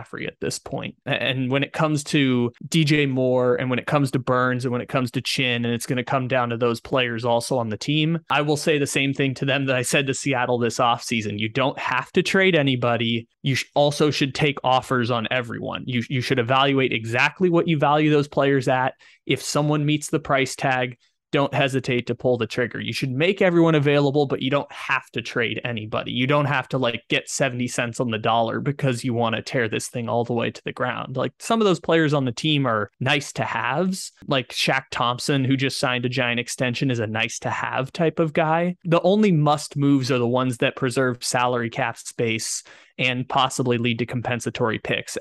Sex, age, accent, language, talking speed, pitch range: male, 20-39, American, English, 225 wpm, 120-145 Hz